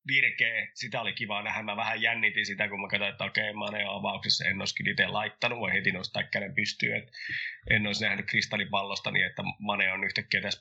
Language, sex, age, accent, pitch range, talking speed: Finnish, male, 20-39, native, 100-120 Hz, 210 wpm